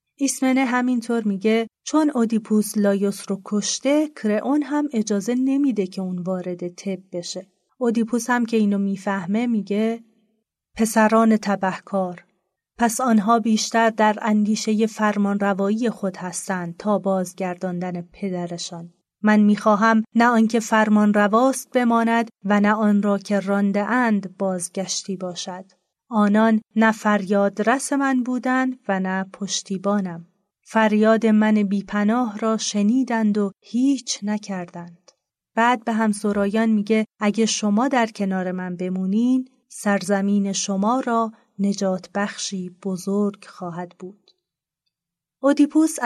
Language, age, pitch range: Persian, 30-49, 195-230 Hz